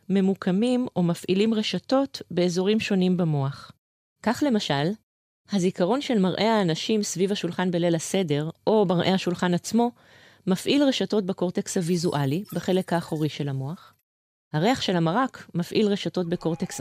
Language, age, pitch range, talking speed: Hebrew, 30-49, 155-200 Hz, 125 wpm